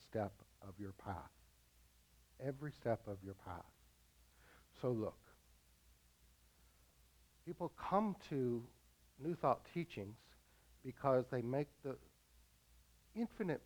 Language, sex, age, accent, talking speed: English, male, 60-79, American, 95 wpm